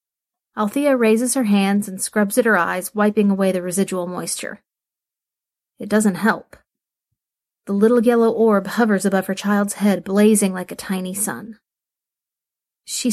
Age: 40-59